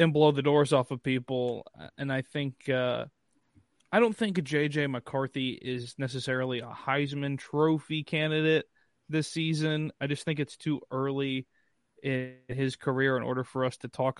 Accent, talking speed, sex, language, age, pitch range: American, 160 wpm, male, English, 20-39, 125-145 Hz